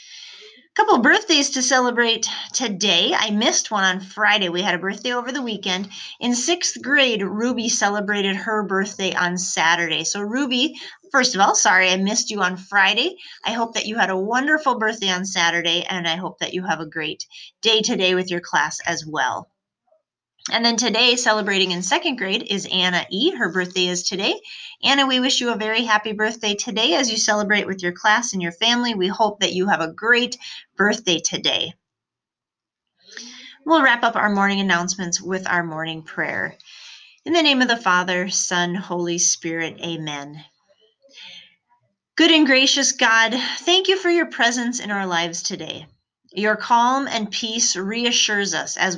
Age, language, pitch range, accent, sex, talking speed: 30-49, English, 180-245 Hz, American, female, 175 wpm